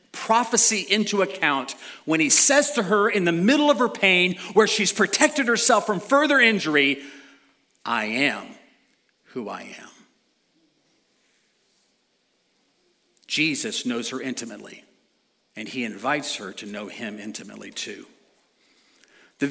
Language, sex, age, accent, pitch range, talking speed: English, male, 50-69, American, 140-200 Hz, 125 wpm